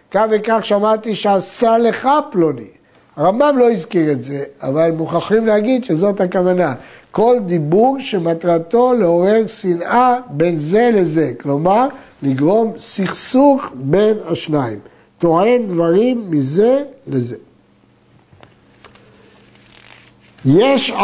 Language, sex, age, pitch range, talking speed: Hebrew, male, 60-79, 165-240 Hz, 95 wpm